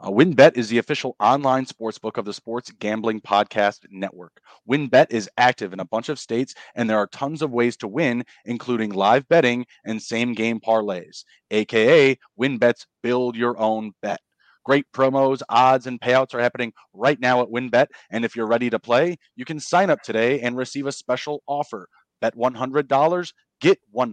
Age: 30-49